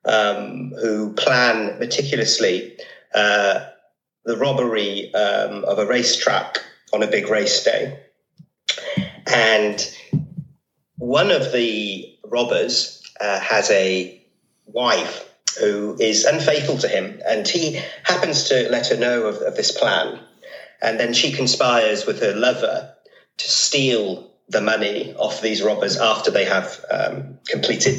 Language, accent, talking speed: English, British, 130 wpm